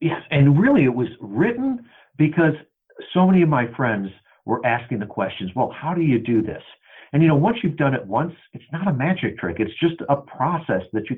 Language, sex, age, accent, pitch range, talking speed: English, male, 50-69, American, 115-155 Hz, 220 wpm